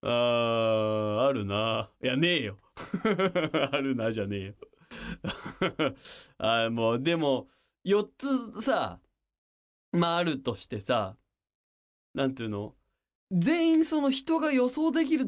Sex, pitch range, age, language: male, 100-150 Hz, 20-39, Japanese